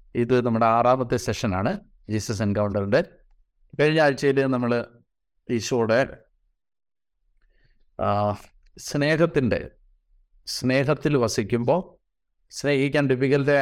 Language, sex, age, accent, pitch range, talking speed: Malayalam, male, 30-49, native, 110-140 Hz, 70 wpm